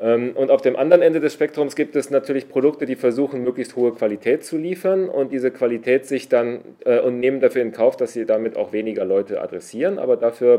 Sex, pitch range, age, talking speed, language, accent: male, 100-145 Hz, 30-49, 210 wpm, German, German